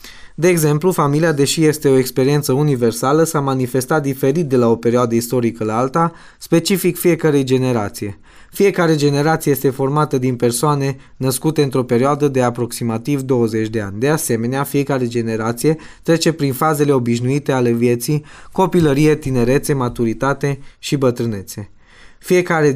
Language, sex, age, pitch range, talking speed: Romanian, male, 20-39, 120-145 Hz, 135 wpm